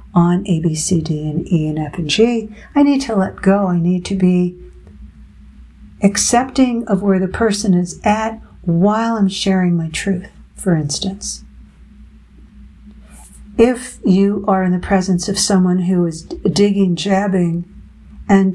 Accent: American